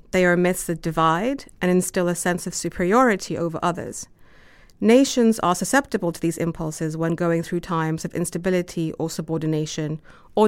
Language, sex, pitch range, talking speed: English, female, 165-205 Hz, 160 wpm